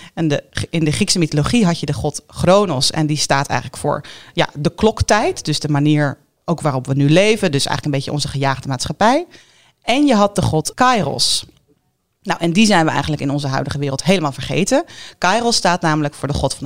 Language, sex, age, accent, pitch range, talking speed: Dutch, female, 40-59, Dutch, 145-190 Hz, 195 wpm